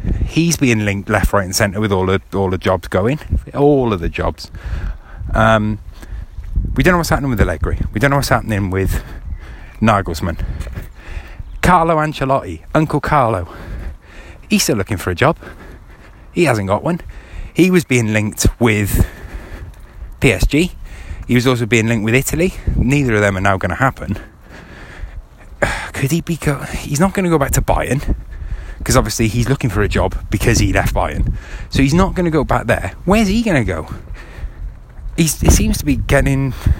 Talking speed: 175 wpm